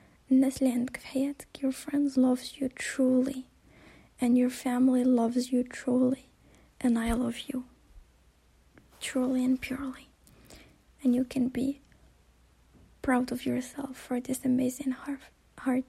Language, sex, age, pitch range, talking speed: English, female, 20-39, 240-270 Hz, 115 wpm